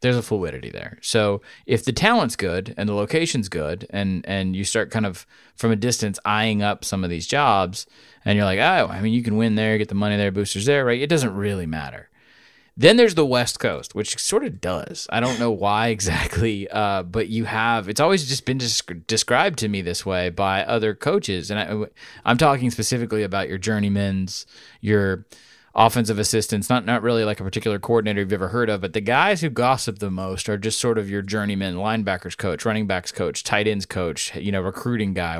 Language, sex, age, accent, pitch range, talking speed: English, male, 20-39, American, 100-120 Hz, 215 wpm